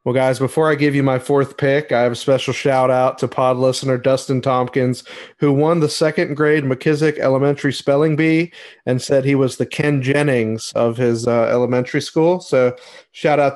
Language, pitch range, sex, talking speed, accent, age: English, 125-150 Hz, male, 185 wpm, American, 30-49